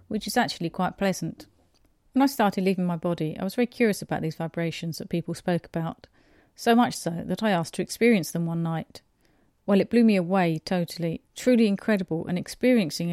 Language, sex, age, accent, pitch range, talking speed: English, female, 40-59, British, 170-220 Hz, 195 wpm